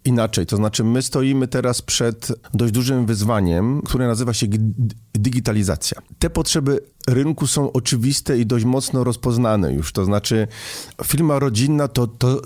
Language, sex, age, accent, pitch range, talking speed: Polish, male, 40-59, native, 110-130 Hz, 145 wpm